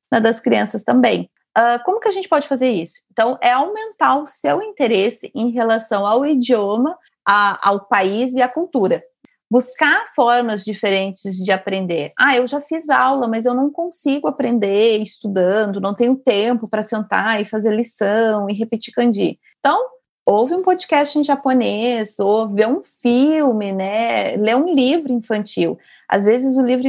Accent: Brazilian